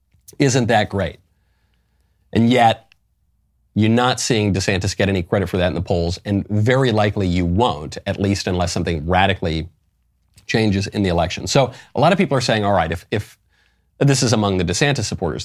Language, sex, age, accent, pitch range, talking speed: English, male, 40-59, American, 90-125 Hz, 185 wpm